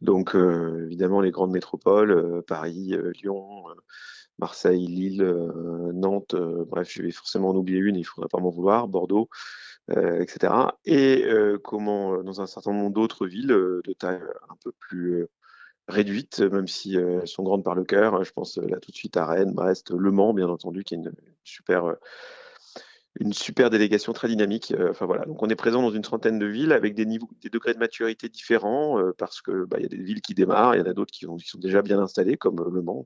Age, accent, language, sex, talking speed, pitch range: 30-49, French, French, male, 230 wpm, 90-110 Hz